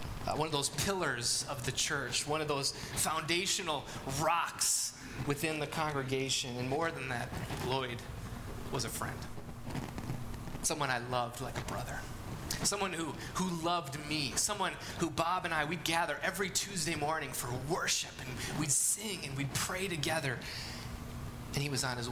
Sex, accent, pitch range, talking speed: male, American, 120-165 Hz, 155 wpm